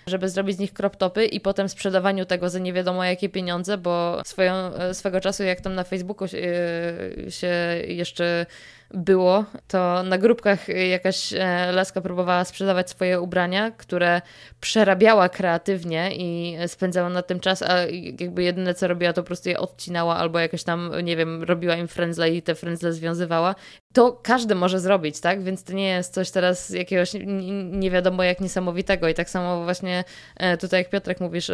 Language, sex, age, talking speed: Polish, female, 20-39, 165 wpm